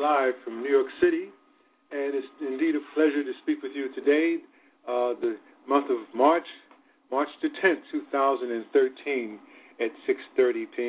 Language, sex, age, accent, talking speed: English, male, 50-69, American, 130 wpm